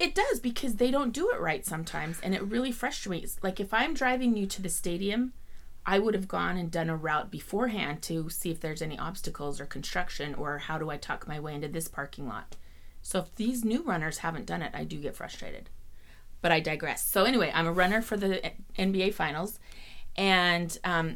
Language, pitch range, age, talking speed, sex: English, 150-200 Hz, 30-49, 215 wpm, female